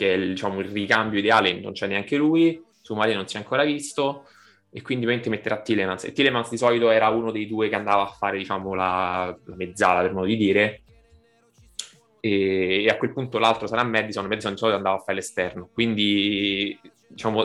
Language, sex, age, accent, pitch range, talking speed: Italian, male, 20-39, native, 100-115 Hz, 205 wpm